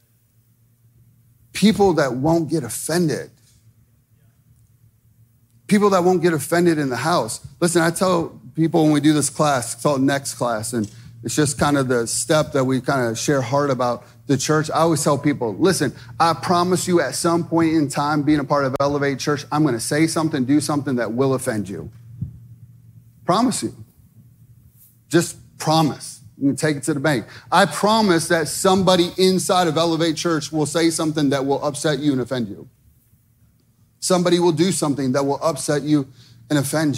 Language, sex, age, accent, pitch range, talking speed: English, male, 30-49, American, 120-165 Hz, 175 wpm